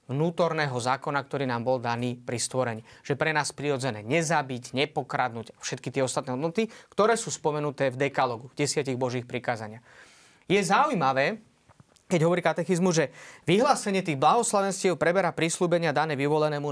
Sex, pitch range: male, 135-175 Hz